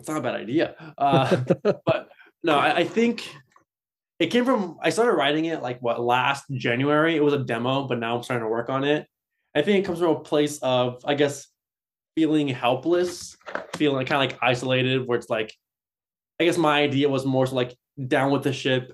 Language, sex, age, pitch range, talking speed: English, male, 20-39, 125-150 Hz, 210 wpm